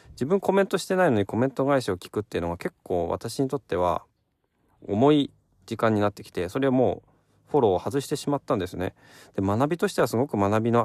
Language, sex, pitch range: Japanese, male, 95-135 Hz